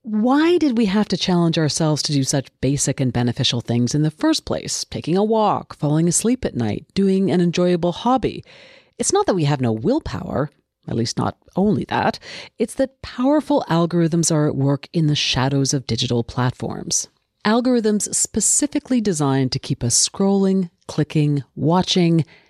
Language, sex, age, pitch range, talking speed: English, female, 40-59, 140-225 Hz, 170 wpm